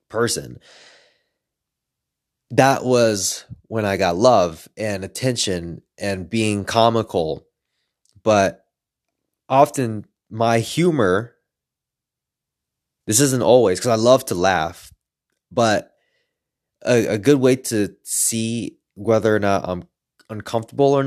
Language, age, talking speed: English, 20-39, 105 wpm